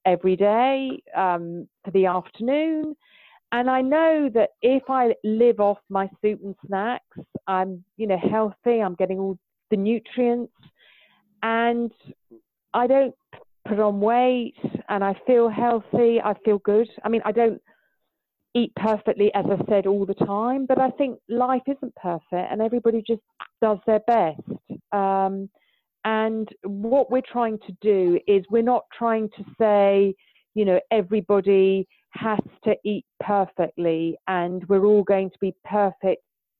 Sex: female